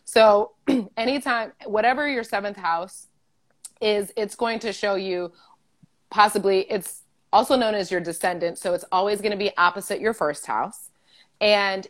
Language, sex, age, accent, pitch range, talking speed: English, female, 30-49, American, 175-210 Hz, 150 wpm